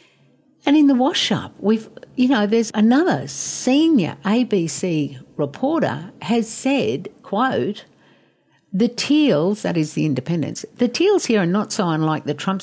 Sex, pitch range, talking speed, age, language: female, 145-225 Hz, 145 wpm, 60-79, English